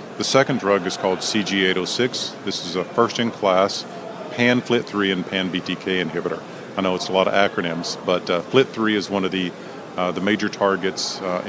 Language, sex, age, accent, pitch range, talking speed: English, male, 50-69, American, 90-100 Hz, 190 wpm